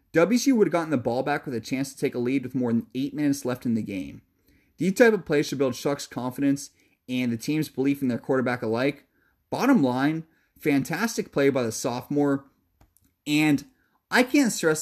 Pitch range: 125-165 Hz